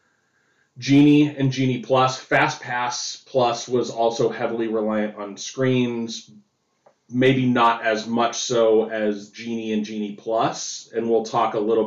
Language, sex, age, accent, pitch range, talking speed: English, male, 30-49, American, 110-130 Hz, 135 wpm